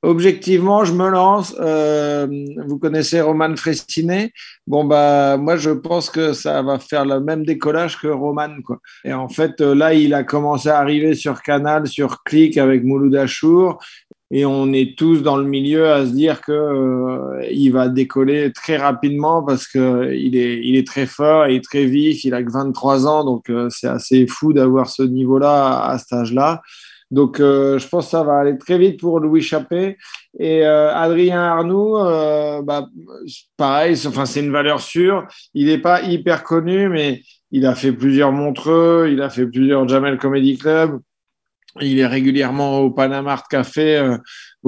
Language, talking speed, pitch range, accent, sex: French, 180 wpm, 135-160 Hz, French, male